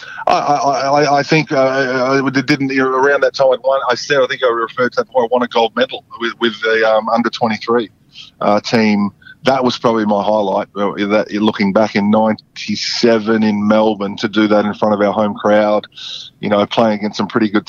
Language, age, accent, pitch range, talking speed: English, 20-39, Australian, 105-120 Hz, 205 wpm